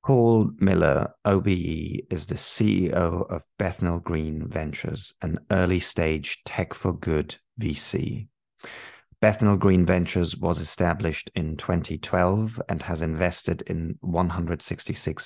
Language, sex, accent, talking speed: English, male, British, 100 wpm